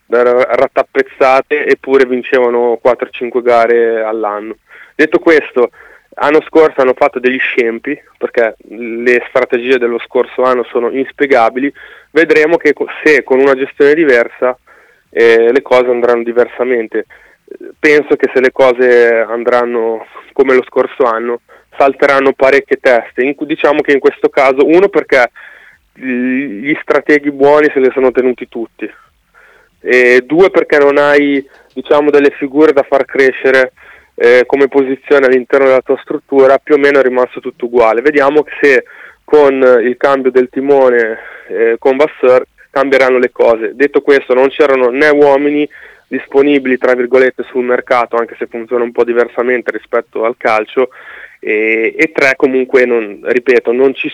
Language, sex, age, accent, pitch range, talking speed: Italian, male, 20-39, native, 125-145 Hz, 145 wpm